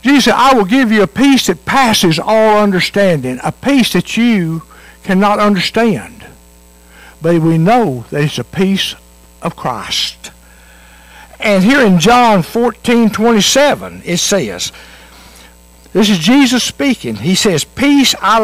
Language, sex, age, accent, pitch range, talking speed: English, male, 60-79, American, 135-215 Hz, 140 wpm